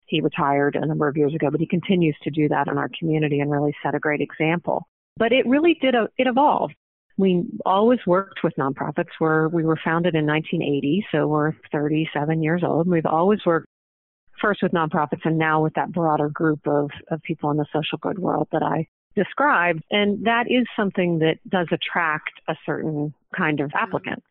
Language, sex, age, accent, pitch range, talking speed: English, female, 40-59, American, 150-190 Hz, 200 wpm